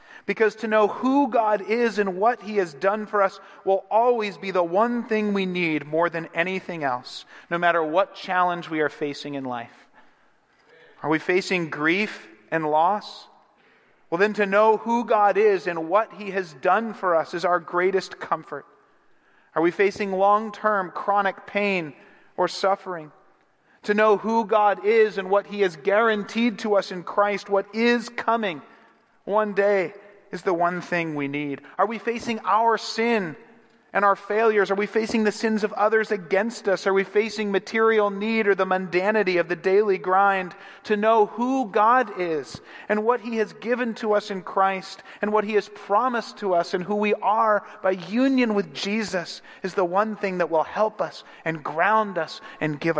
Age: 40-59